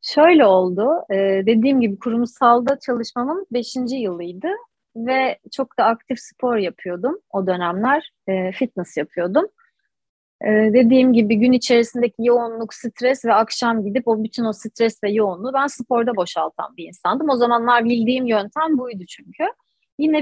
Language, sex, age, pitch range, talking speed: Turkish, female, 30-49, 220-280 Hz, 135 wpm